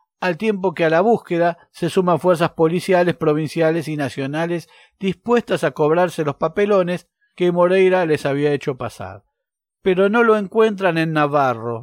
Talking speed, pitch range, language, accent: 150 wpm, 150-190 Hz, Spanish, Argentinian